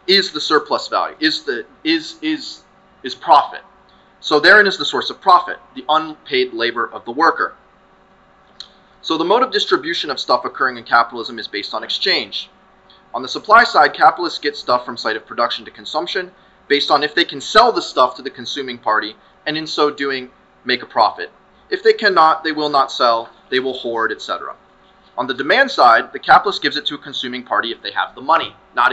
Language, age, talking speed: English, 20-39, 205 wpm